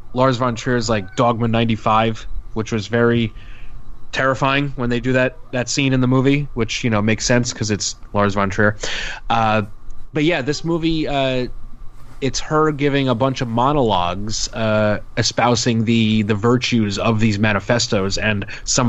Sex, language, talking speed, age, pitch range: male, English, 170 wpm, 30-49, 110-130 Hz